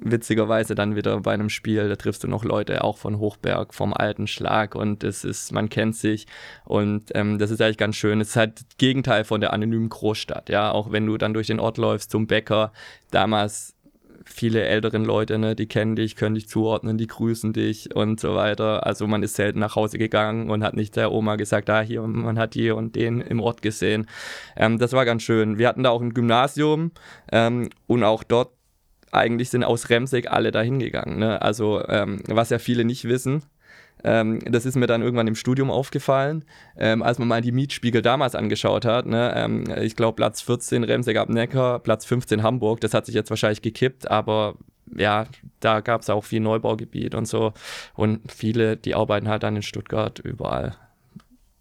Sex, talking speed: male, 205 wpm